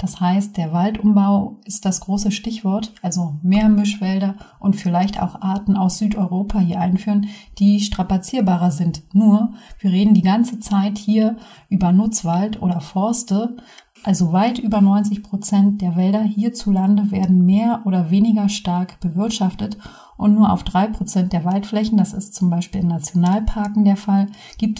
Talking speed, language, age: 150 wpm, German, 30-49